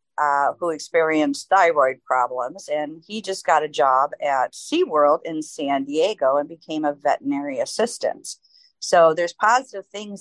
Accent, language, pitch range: American, English, 150-195 Hz